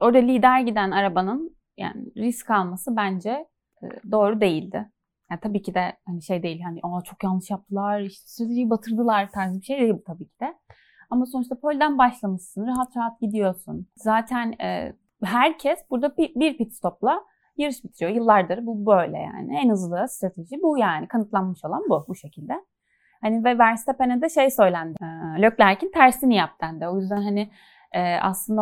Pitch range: 195-255 Hz